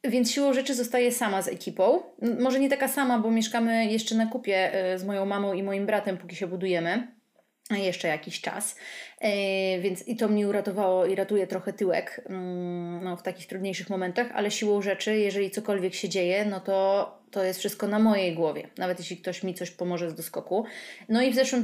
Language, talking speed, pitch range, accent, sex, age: Polish, 190 wpm, 185-235 Hz, native, female, 20-39